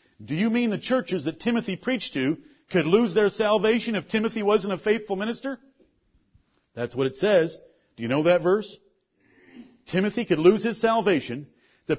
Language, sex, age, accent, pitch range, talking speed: English, male, 50-69, American, 170-220 Hz, 170 wpm